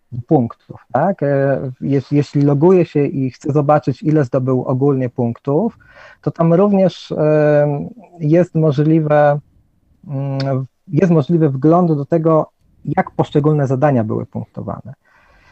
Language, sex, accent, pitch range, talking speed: Polish, male, native, 130-160 Hz, 105 wpm